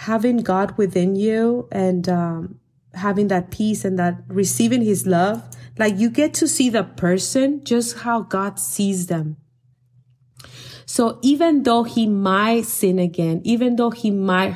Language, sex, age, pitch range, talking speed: English, female, 20-39, 175-225 Hz, 155 wpm